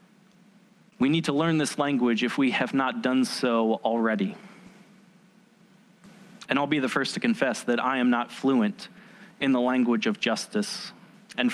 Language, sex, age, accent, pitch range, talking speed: English, male, 30-49, American, 150-210 Hz, 160 wpm